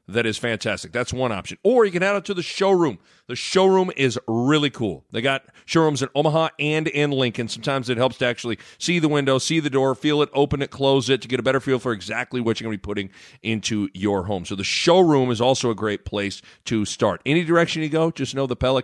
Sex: male